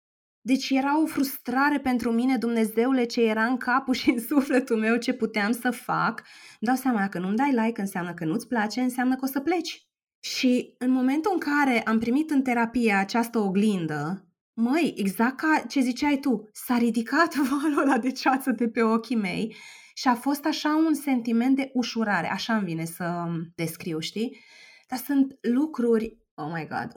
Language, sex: Romanian, female